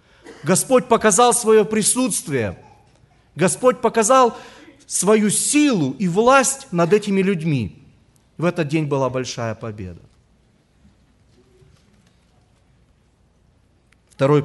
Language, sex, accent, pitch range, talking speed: Russian, male, native, 125-205 Hz, 85 wpm